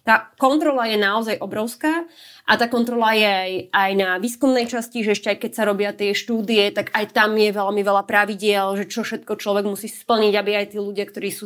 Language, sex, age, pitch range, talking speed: Slovak, female, 20-39, 200-240 Hz, 215 wpm